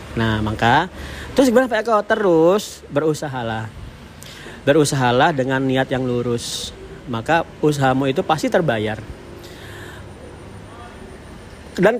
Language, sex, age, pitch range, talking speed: Indonesian, male, 40-59, 120-145 Hz, 75 wpm